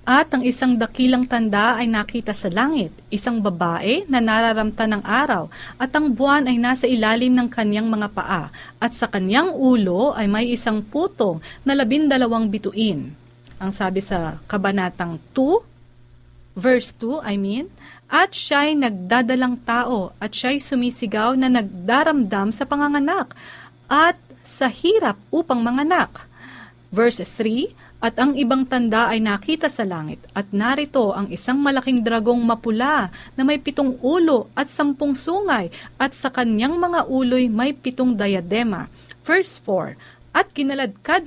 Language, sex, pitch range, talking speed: Filipino, female, 210-275 Hz, 140 wpm